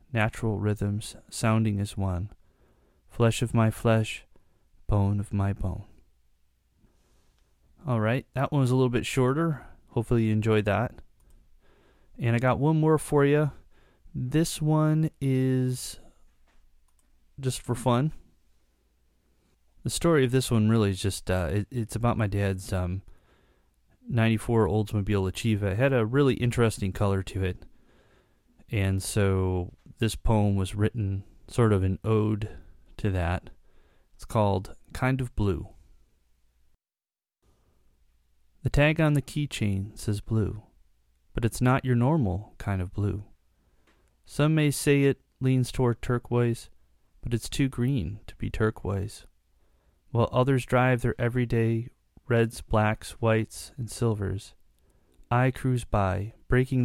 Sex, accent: male, American